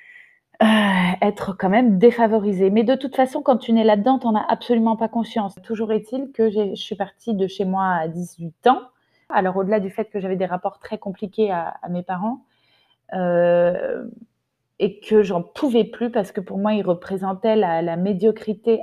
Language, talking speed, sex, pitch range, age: French, 190 wpm, female, 190-235 Hz, 20-39